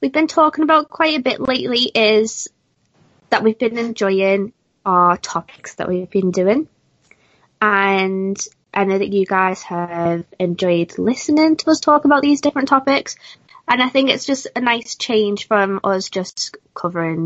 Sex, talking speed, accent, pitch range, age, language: female, 165 wpm, British, 185-235 Hz, 20-39, English